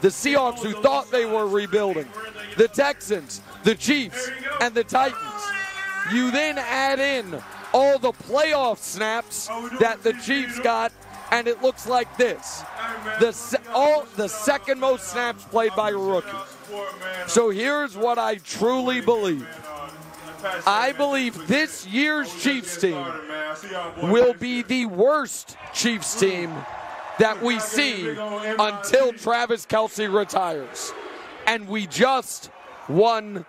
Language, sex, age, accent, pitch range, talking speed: English, male, 40-59, American, 205-250 Hz, 125 wpm